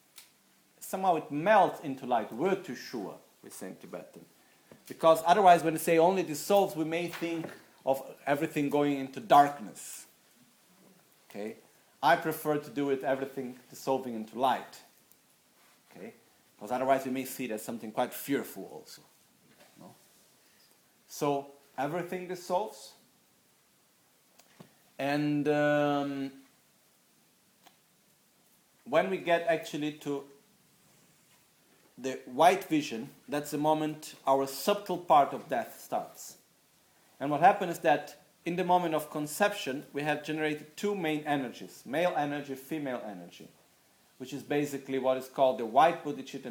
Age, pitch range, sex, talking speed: 40-59, 135-165 Hz, male, 130 wpm